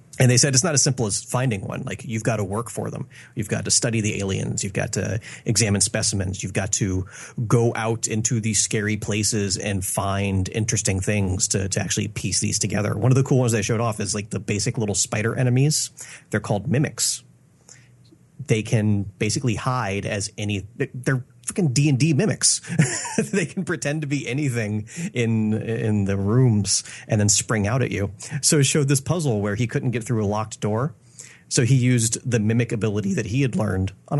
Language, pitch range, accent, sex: English, 105-130 Hz, American, male